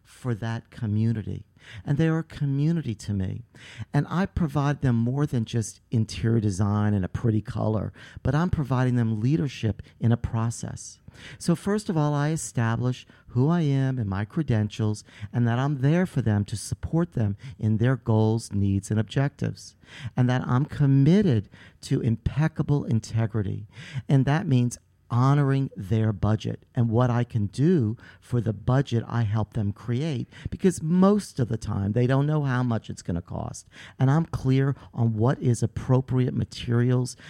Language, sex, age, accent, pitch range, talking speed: English, male, 50-69, American, 105-130 Hz, 170 wpm